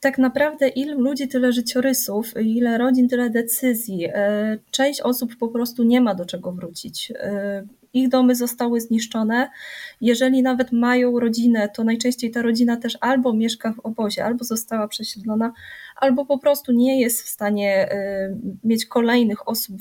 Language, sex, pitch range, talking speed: Polish, female, 215-250 Hz, 150 wpm